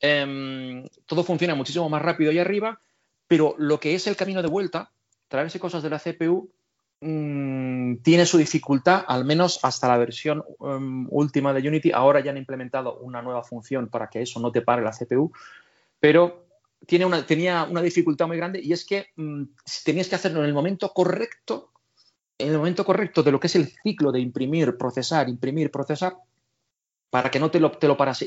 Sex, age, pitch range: male, 30-49, 125-160 Hz